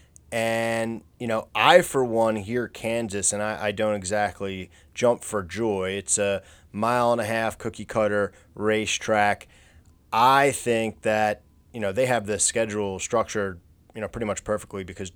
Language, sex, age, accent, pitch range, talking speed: English, male, 30-49, American, 100-125 Hz, 160 wpm